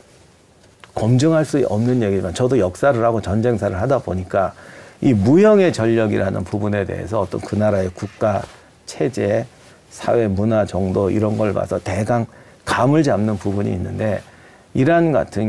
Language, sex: Korean, male